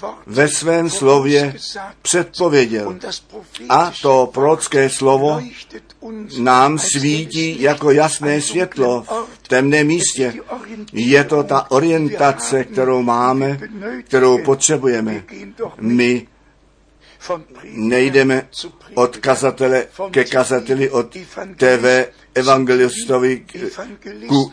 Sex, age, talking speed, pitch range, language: male, 60-79, 80 wpm, 125-150 Hz, Czech